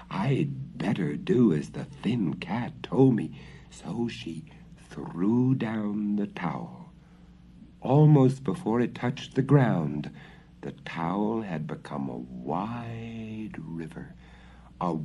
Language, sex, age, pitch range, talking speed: English, male, 60-79, 90-150 Hz, 115 wpm